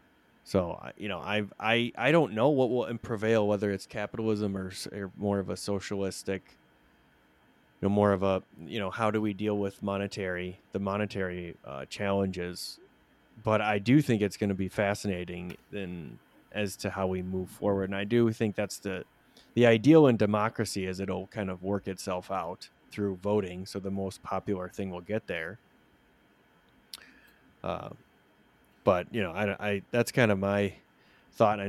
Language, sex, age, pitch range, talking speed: English, male, 20-39, 95-105 Hz, 170 wpm